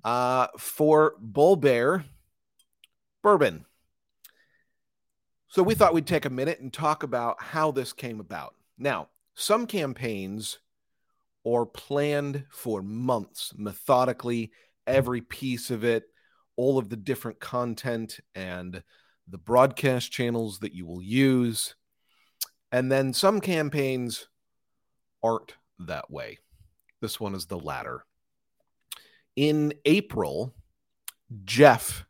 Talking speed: 110 wpm